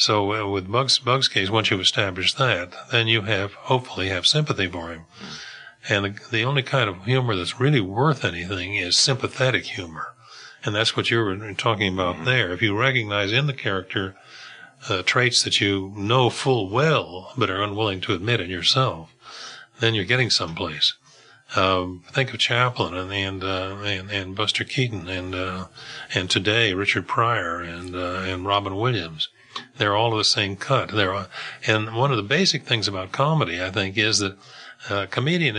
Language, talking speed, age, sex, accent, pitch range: English, 175 wpm, 50-69, male, American, 95-120 Hz